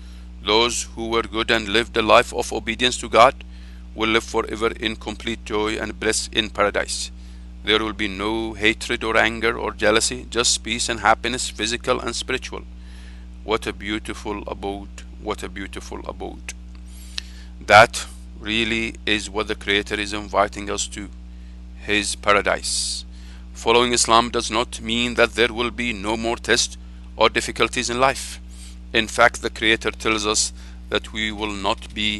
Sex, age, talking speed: male, 50-69, 160 wpm